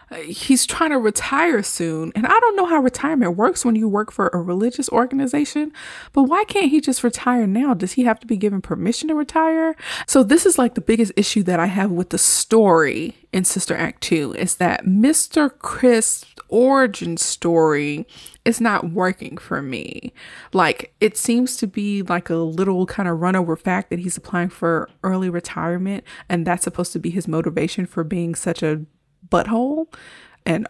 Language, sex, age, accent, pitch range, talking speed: English, female, 20-39, American, 180-260 Hz, 185 wpm